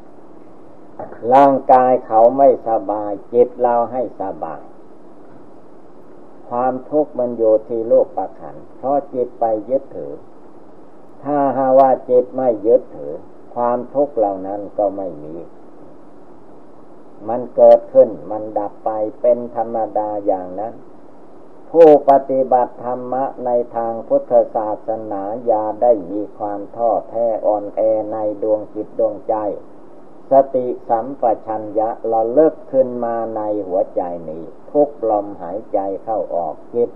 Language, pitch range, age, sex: Thai, 110-140 Hz, 60-79, male